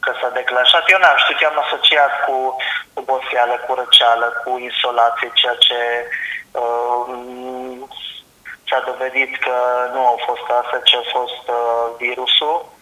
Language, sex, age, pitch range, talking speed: Romanian, male, 20-39, 120-130 Hz, 140 wpm